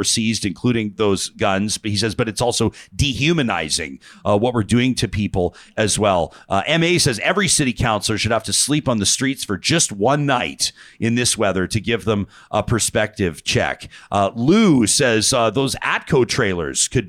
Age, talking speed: 40-59, 185 wpm